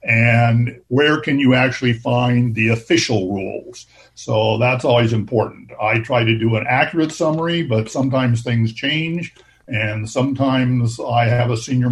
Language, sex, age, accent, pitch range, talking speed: English, male, 60-79, American, 115-135 Hz, 150 wpm